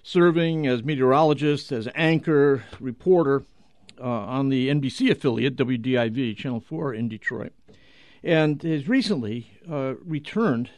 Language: English